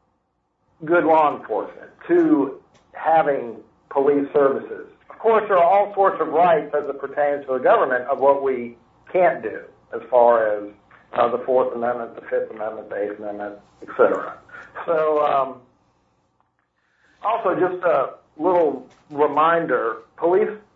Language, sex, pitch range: English, male, 130-165 Hz